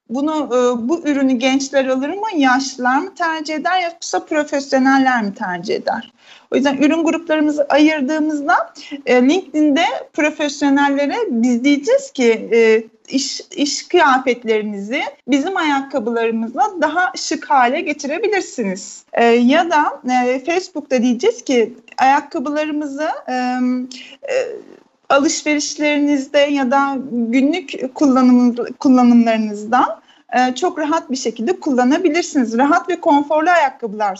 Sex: female